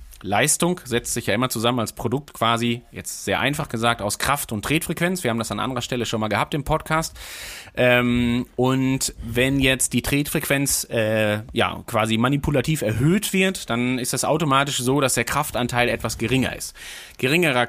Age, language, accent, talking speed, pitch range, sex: 30-49, German, German, 175 wpm, 125-160 Hz, male